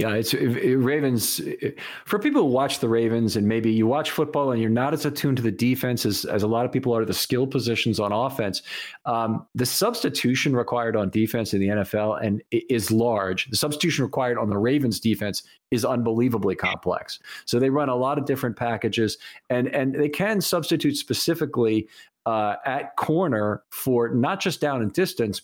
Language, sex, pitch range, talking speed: English, male, 110-140 Hz, 200 wpm